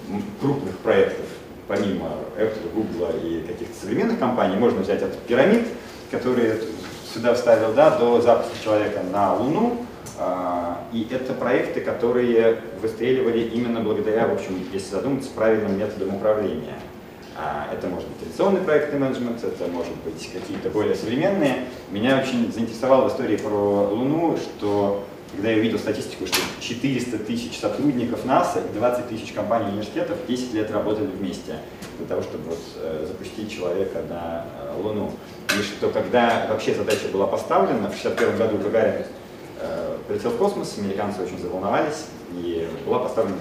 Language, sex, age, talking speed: Russian, male, 30-49, 145 wpm